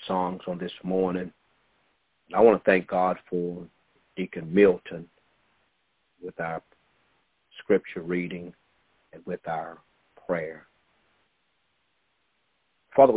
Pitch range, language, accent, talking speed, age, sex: 95-135 Hz, English, American, 95 wpm, 50-69, male